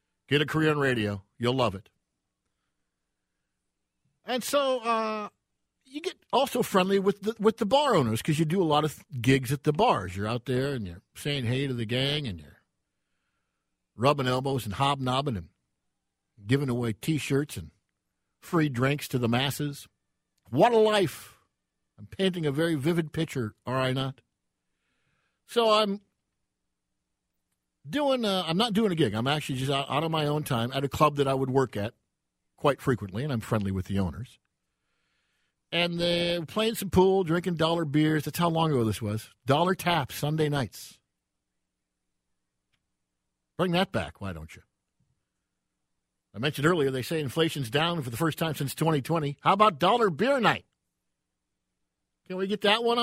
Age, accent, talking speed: 50-69, American, 170 wpm